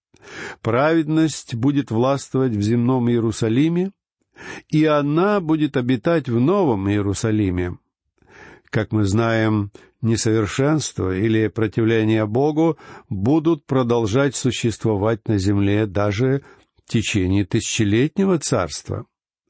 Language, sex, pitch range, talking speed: Russian, male, 110-155 Hz, 90 wpm